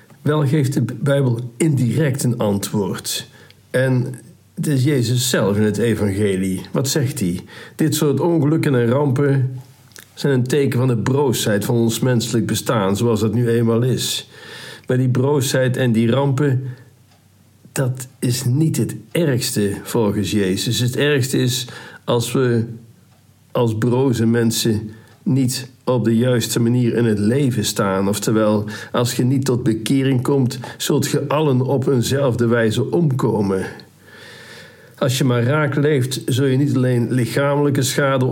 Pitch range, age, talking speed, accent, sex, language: 110-135 Hz, 60-79, 145 wpm, Dutch, male, Dutch